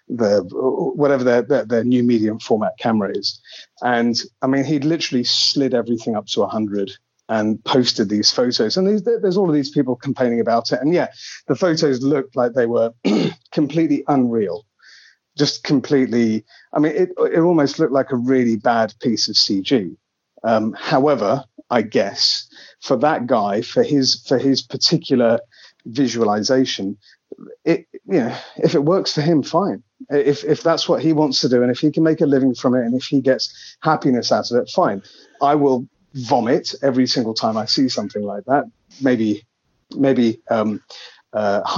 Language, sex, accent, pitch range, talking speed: English, male, British, 115-150 Hz, 175 wpm